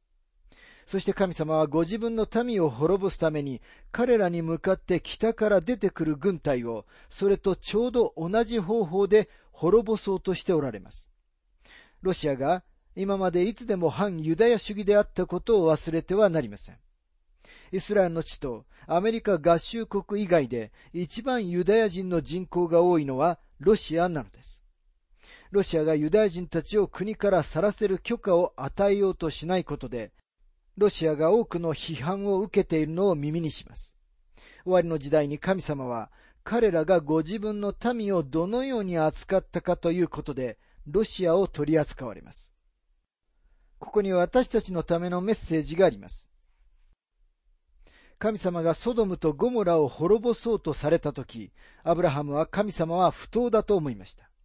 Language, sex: Japanese, male